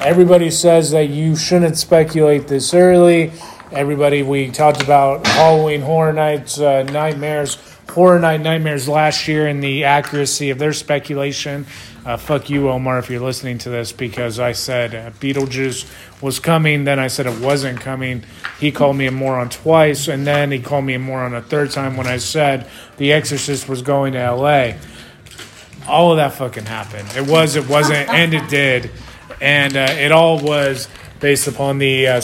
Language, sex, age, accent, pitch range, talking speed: English, male, 30-49, American, 130-155 Hz, 180 wpm